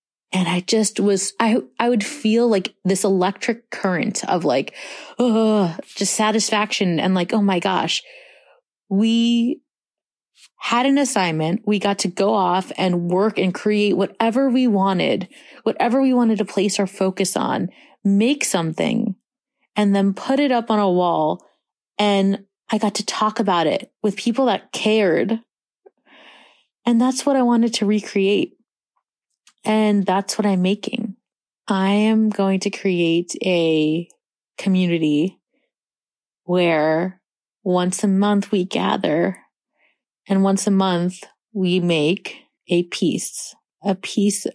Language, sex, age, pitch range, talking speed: English, female, 30-49, 180-220 Hz, 135 wpm